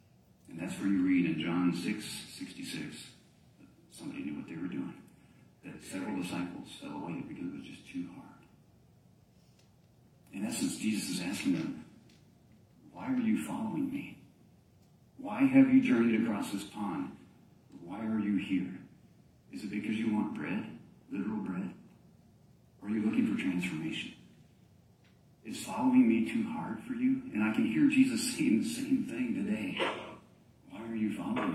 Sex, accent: male, American